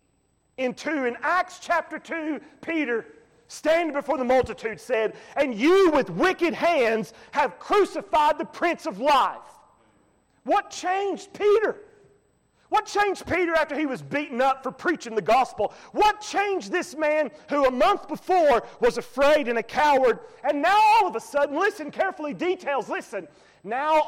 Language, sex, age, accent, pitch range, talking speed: English, male, 40-59, American, 265-370 Hz, 150 wpm